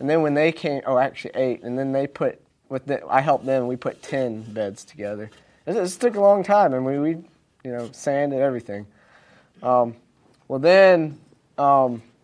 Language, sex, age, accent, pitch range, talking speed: English, male, 30-49, American, 125-145 Hz, 190 wpm